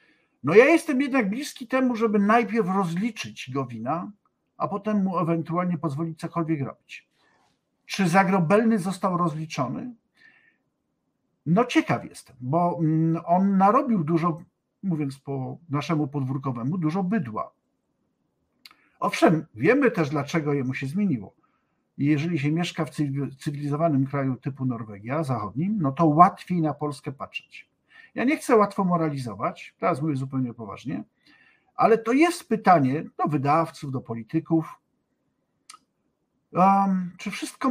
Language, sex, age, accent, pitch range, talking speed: Polish, male, 50-69, native, 145-195 Hz, 125 wpm